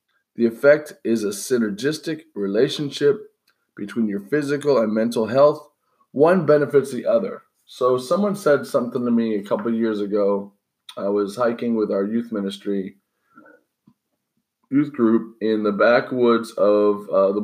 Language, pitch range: English, 105-135 Hz